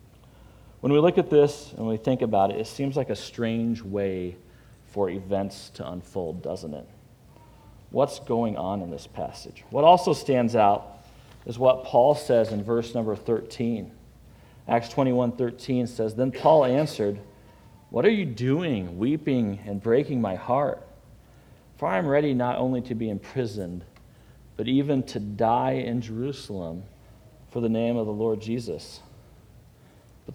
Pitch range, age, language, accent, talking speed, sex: 110-145 Hz, 40-59, English, American, 155 wpm, male